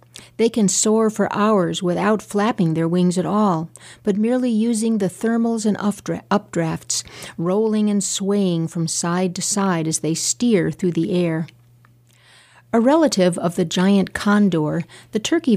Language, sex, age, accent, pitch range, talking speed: English, female, 50-69, American, 165-205 Hz, 150 wpm